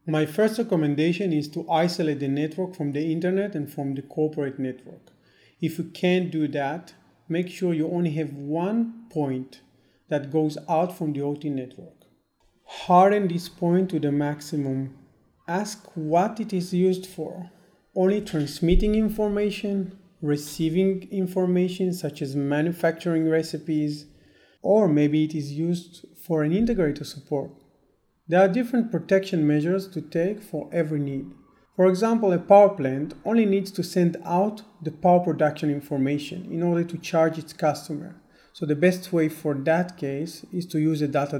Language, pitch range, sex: English, 150-185 Hz, male